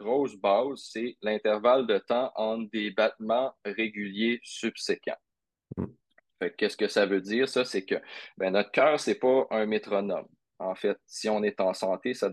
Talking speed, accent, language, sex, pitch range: 175 wpm, Canadian, French, male, 100-120 Hz